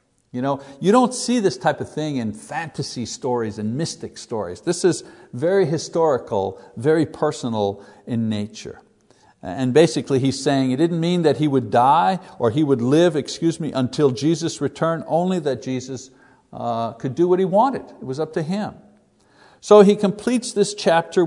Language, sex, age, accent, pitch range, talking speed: English, male, 60-79, American, 135-180 Hz, 170 wpm